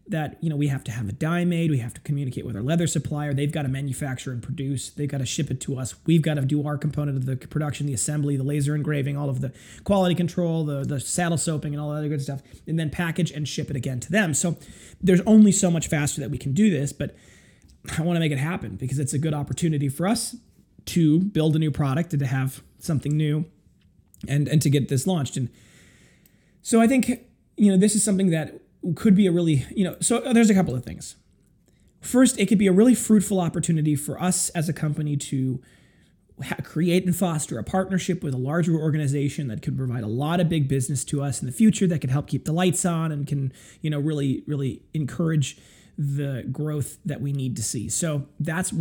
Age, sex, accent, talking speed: 20-39, male, American, 235 wpm